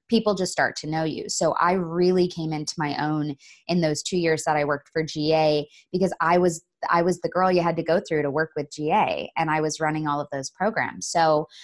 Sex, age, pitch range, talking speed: female, 20-39, 155-185 Hz, 240 wpm